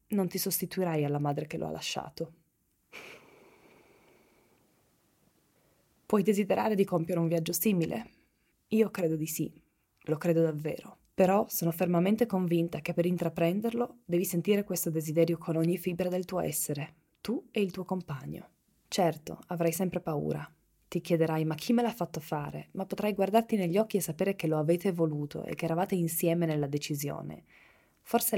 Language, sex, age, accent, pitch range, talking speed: Italian, female, 20-39, native, 160-190 Hz, 160 wpm